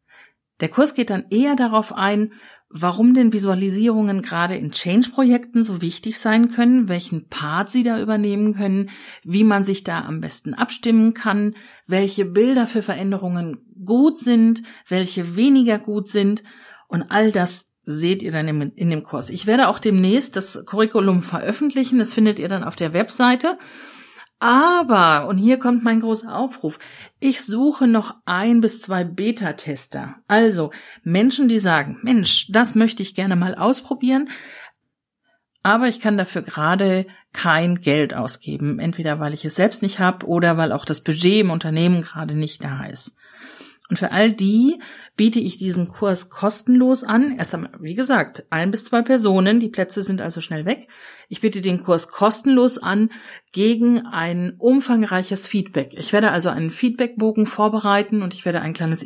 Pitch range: 180-235 Hz